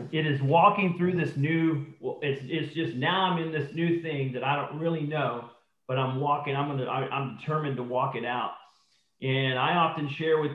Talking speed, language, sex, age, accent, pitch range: 210 wpm, English, male, 40-59, American, 135-165 Hz